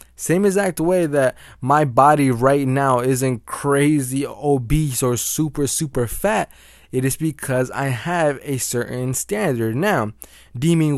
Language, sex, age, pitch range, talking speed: English, male, 20-39, 125-150 Hz, 135 wpm